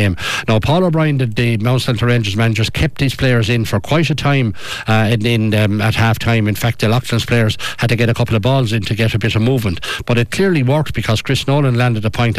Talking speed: 255 wpm